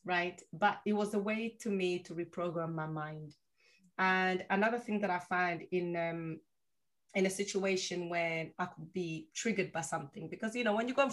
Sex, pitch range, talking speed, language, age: female, 170-200 Hz, 195 wpm, English, 30-49